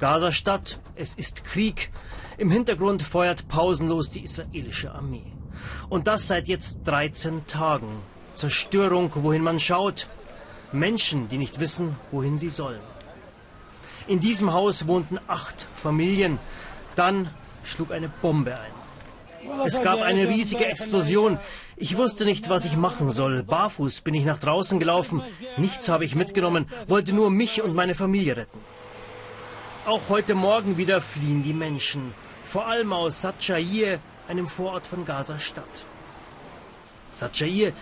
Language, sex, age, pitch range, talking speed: German, male, 30-49, 145-190 Hz, 135 wpm